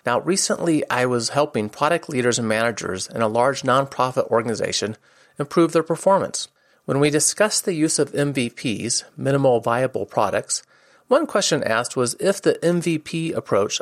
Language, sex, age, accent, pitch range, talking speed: English, male, 40-59, American, 115-165 Hz, 150 wpm